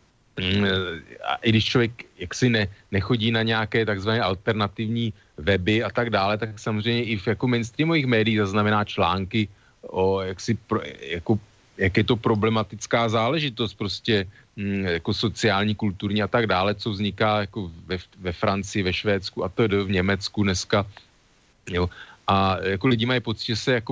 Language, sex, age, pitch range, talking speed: Slovak, male, 40-59, 95-110 Hz, 155 wpm